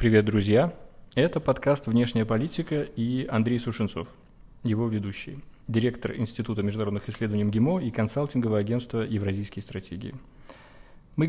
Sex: male